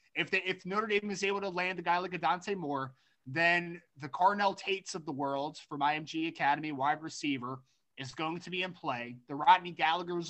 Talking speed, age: 210 wpm, 20-39